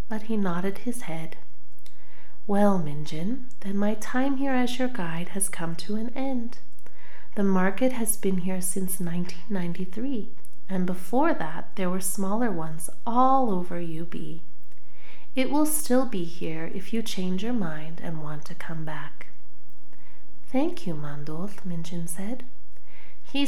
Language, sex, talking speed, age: English, female, 145 wpm, 30-49